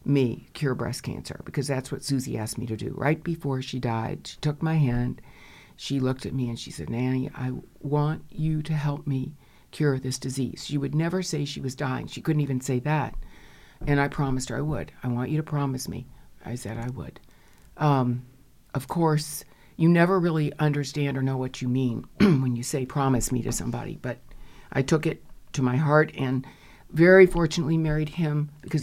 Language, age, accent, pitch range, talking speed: English, 60-79, American, 130-150 Hz, 200 wpm